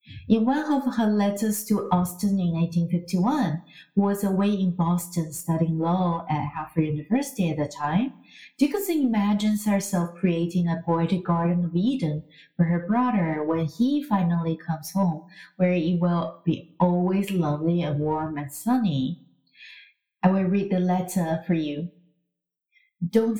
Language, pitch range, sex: Chinese, 170-200 Hz, female